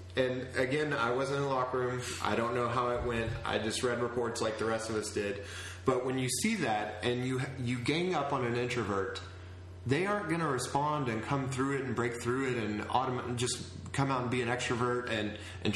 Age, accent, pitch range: 30-49, American, 110-135 Hz